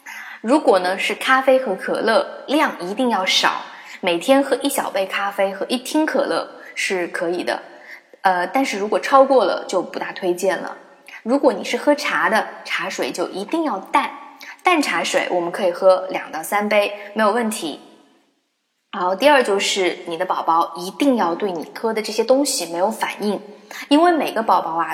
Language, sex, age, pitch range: Chinese, female, 20-39, 180-255 Hz